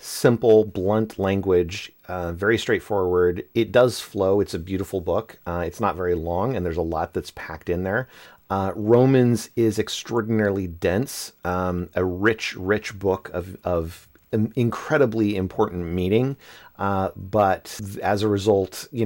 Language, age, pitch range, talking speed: English, 30-49, 95-120 Hz, 150 wpm